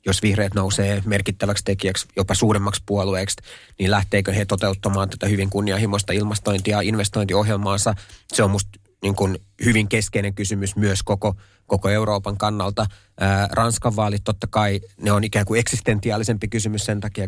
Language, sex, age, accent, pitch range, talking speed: Finnish, male, 30-49, native, 100-110 Hz, 150 wpm